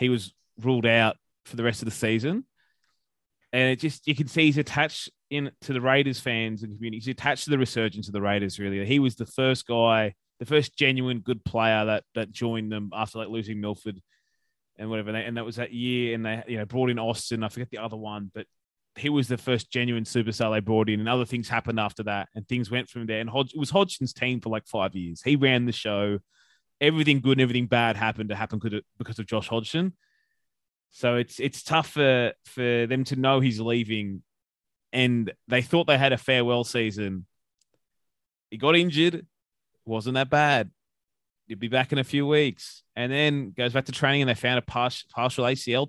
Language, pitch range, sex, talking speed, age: English, 110-135 Hz, male, 210 wpm, 20-39